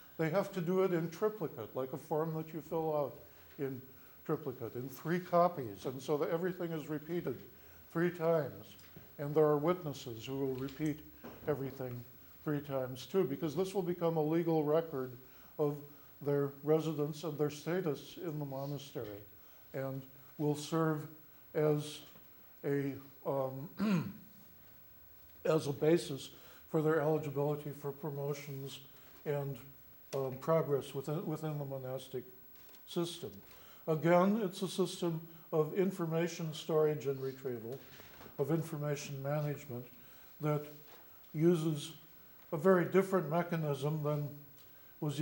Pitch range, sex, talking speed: 135-165 Hz, male, 125 wpm